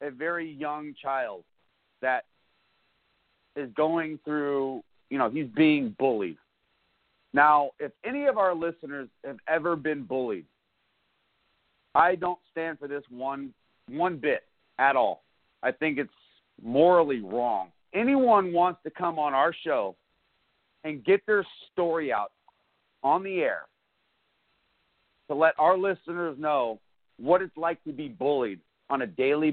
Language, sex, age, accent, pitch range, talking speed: English, male, 40-59, American, 140-170 Hz, 135 wpm